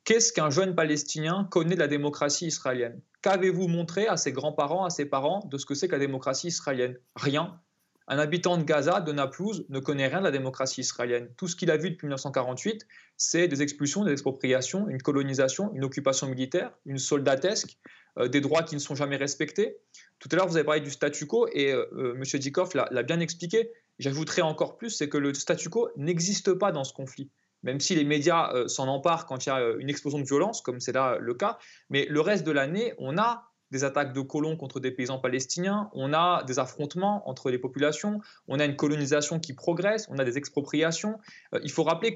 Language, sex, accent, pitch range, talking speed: French, male, French, 140-180 Hz, 220 wpm